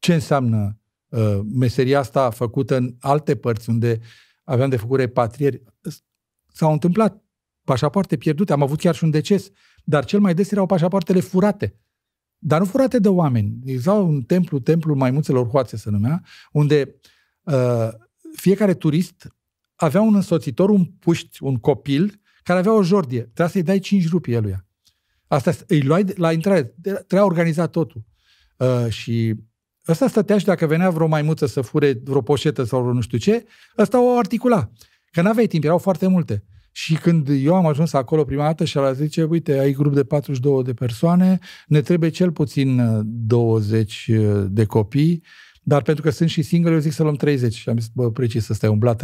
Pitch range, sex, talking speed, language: 120-180 Hz, male, 175 wpm, Romanian